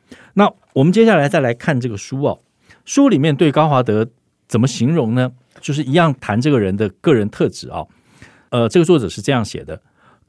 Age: 50-69